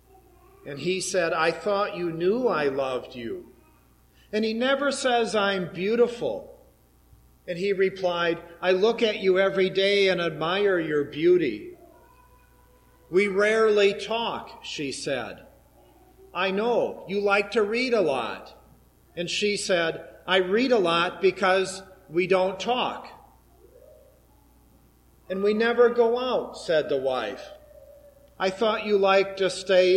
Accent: American